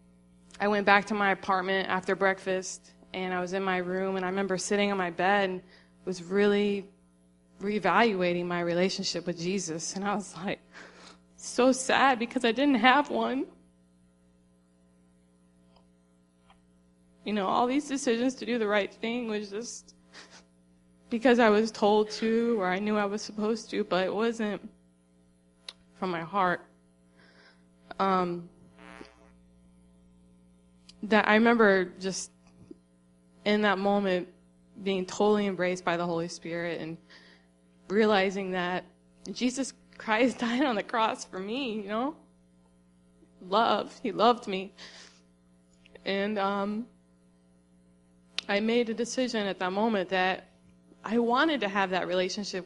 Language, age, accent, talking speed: English, 20-39, American, 135 wpm